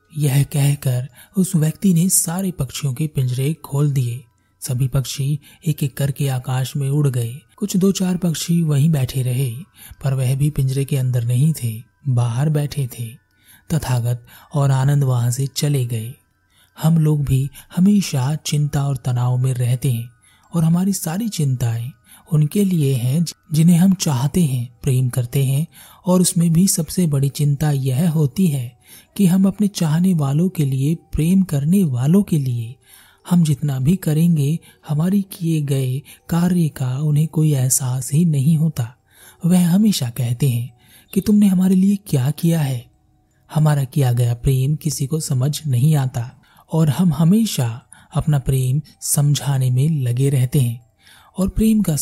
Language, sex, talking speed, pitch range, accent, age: Hindi, male, 160 wpm, 130-165 Hz, native, 30-49